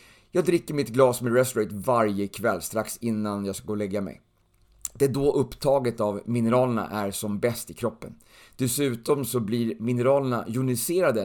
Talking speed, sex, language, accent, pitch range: 170 wpm, male, Swedish, native, 110-140 Hz